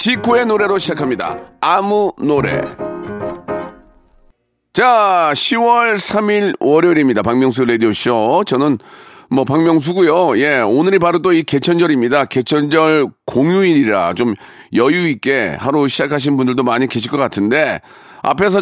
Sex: male